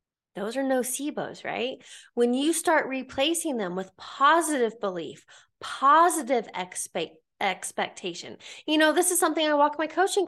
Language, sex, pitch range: English, female, 215-295 Hz